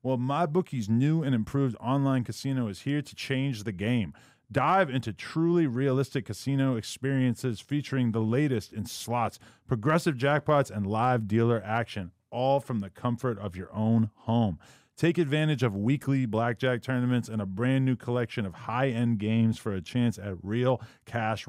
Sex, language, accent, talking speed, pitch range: male, English, American, 160 wpm, 115-140 Hz